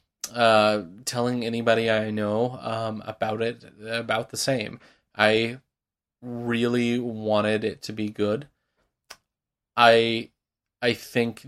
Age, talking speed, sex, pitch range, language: 20-39, 110 wpm, male, 110-120 Hz, English